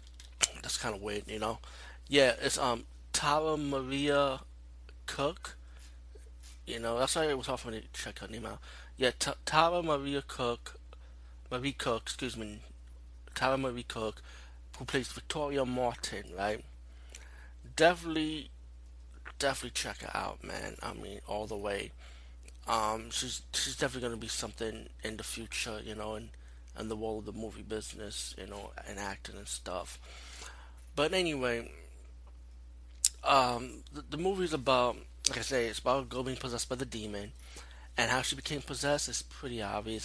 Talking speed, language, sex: 165 wpm, English, male